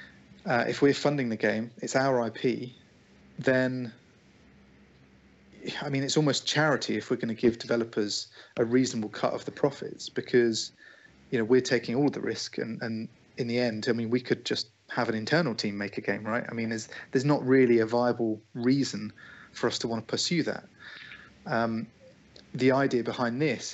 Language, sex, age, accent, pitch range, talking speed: English, male, 30-49, British, 110-130 Hz, 185 wpm